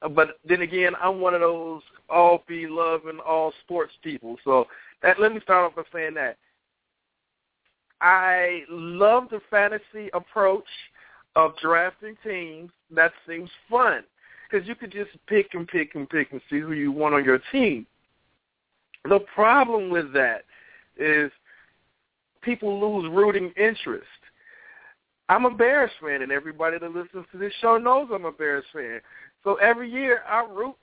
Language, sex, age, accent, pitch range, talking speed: English, male, 50-69, American, 160-230 Hz, 150 wpm